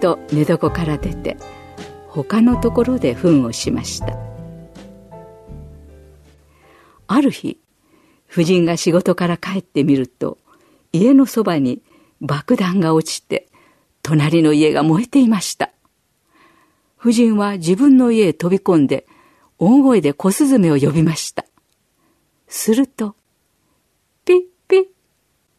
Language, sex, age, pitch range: Japanese, female, 50-69, 155-220 Hz